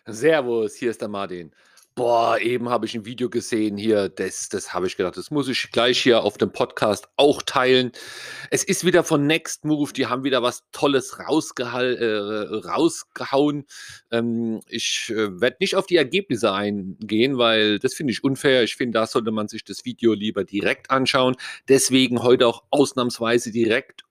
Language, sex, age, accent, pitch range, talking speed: German, male, 40-59, German, 110-140 Hz, 175 wpm